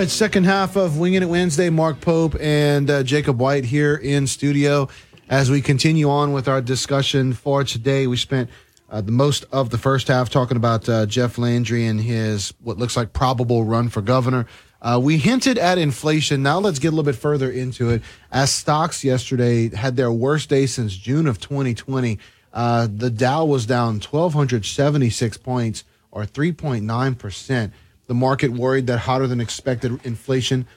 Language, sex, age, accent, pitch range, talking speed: English, male, 30-49, American, 115-140 Hz, 175 wpm